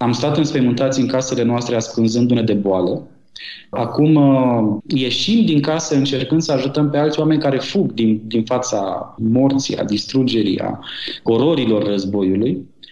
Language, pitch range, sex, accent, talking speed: Romanian, 120-165 Hz, male, native, 150 wpm